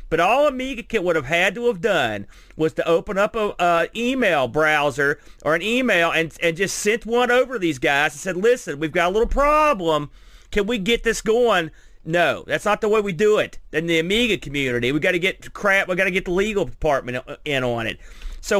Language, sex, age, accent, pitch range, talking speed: English, male, 40-59, American, 165-220 Hz, 225 wpm